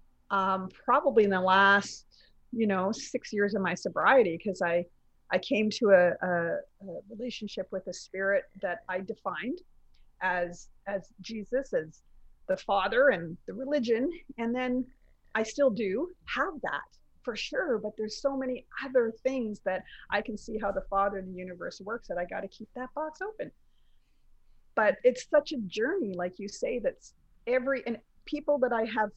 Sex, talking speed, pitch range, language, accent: female, 175 wpm, 190-250 Hz, English, American